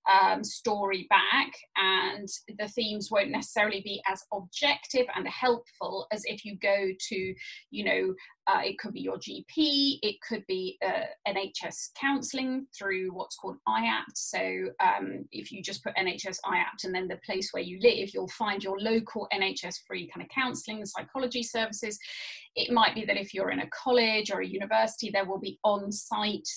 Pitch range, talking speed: 195-250 Hz, 180 wpm